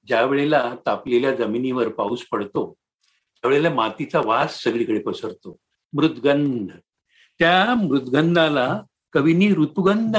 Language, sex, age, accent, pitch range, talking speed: Marathi, male, 60-79, native, 160-195 Hz, 95 wpm